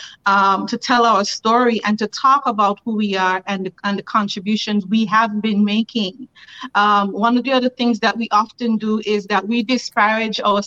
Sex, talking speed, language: female, 195 wpm, English